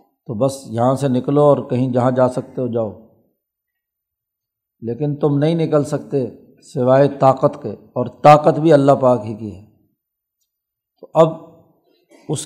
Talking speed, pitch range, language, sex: 150 wpm, 125-145 Hz, Urdu, male